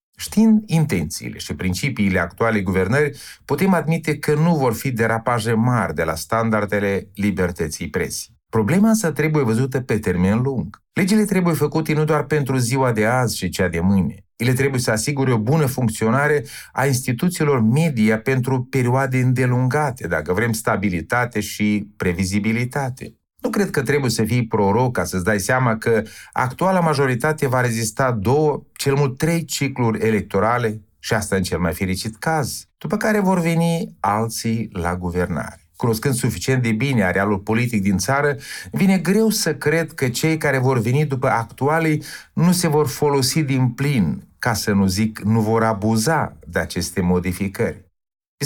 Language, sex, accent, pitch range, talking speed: Romanian, male, native, 105-150 Hz, 160 wpm